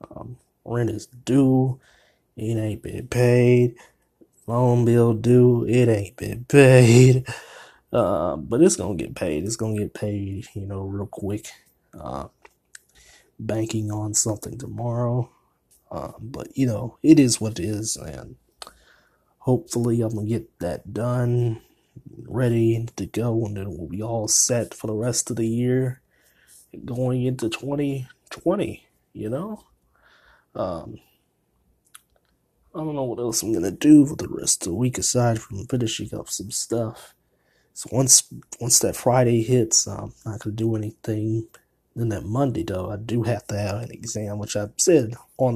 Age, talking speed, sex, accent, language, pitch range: 20-39, 160 wpm, male, American, English, 110-125 Hz